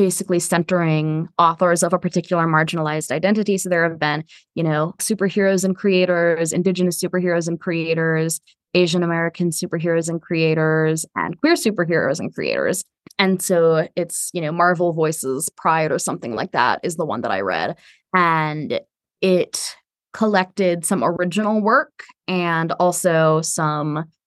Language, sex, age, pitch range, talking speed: English, female, 20-39, 165-195 Hz, 145 wpm